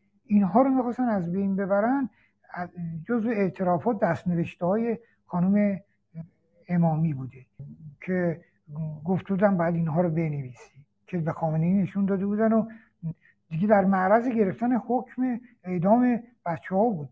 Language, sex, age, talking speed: Persian, male, 60-79, 120 wpm